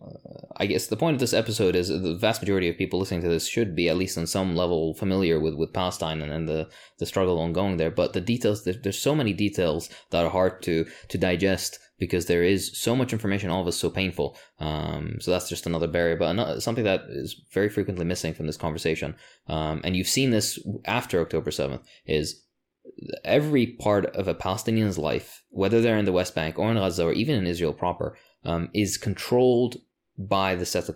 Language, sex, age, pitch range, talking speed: English, male, 20-39, 85-105 Hz, 215 wpm